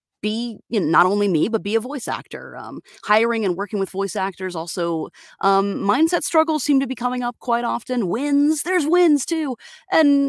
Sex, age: female, 30-49